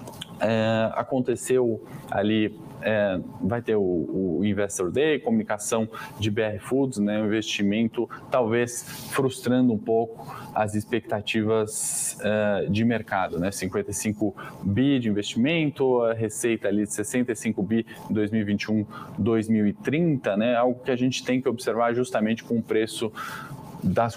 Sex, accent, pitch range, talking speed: male, Brazilian, 105-120 Hz, 130 wpm